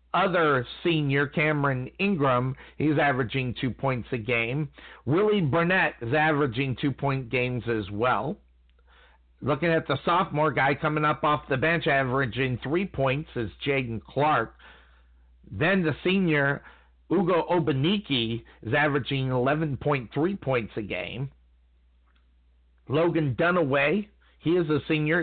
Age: 50-69